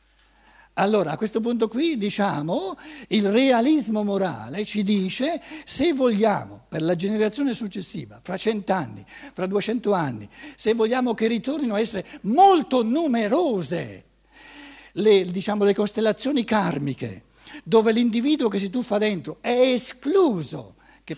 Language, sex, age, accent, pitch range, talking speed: Italian, male, 60-79, native, 160-230 Hz, 120 wpm